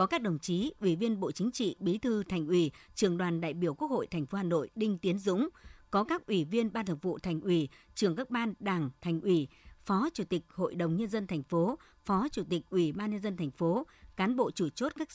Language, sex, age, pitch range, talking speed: Vietnamese, male, 60-79, 170-220 Hz, 255 wpm